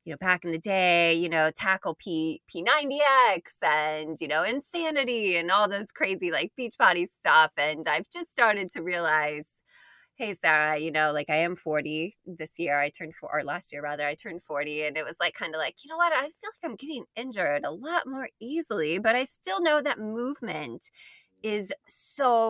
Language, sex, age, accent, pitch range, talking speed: English, female, 20-39, American, 155-240 Hz, 205 wpm